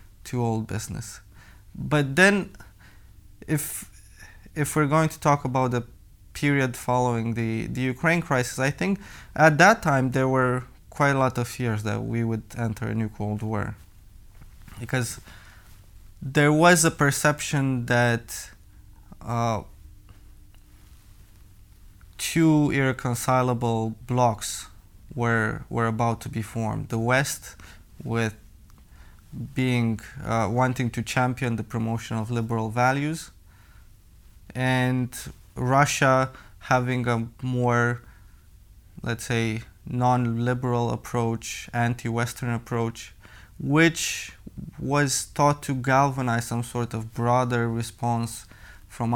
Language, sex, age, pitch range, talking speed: English, male, 20-39, 105-125 Hz, 110 wpm